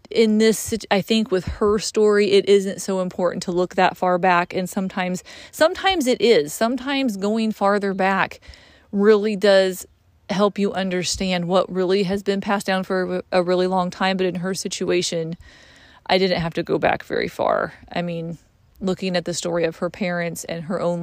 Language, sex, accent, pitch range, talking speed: English, female, American, 175-205 Hz, 185 wpm